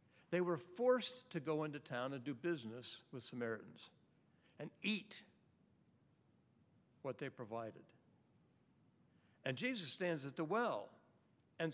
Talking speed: 125 wpm